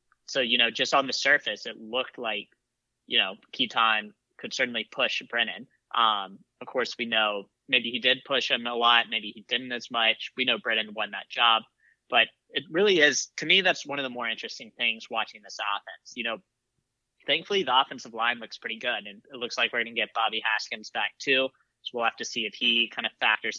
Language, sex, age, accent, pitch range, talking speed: English, male, 20-39, American, 115-135 Hz, 220 wpm